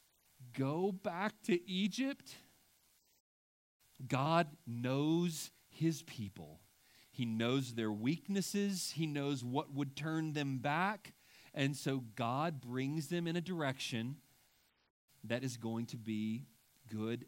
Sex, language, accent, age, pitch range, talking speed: male, English, American, 40-59, 110-150 Hz, 115 wpm